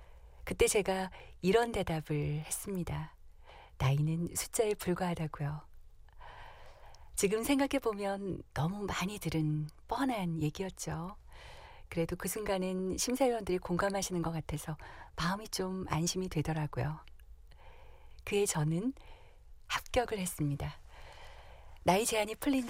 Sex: female